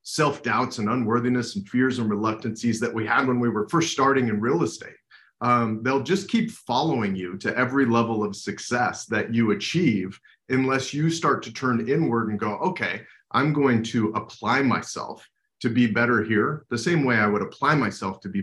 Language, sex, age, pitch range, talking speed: English, male, 30-49, 105-130 Hz, 190 wpm